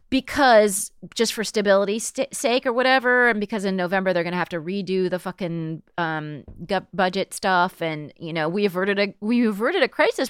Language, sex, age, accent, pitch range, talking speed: English, female, 30-49, American, 175-235 Hz, 190 wpm